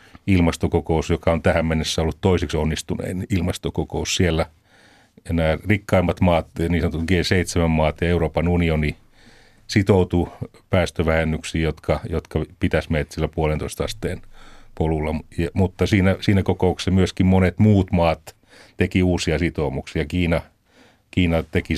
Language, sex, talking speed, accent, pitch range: Finnish, male, 125 wpm, native, 80-95 Hz